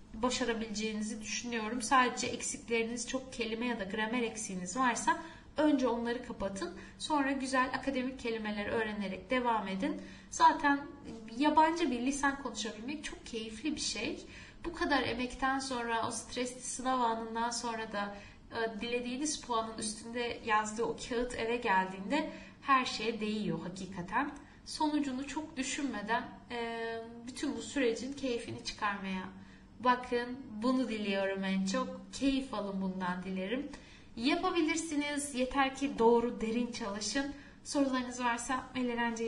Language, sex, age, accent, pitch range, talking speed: Turkish, female, 10-29, native, 225-275 Hz, 120 wpm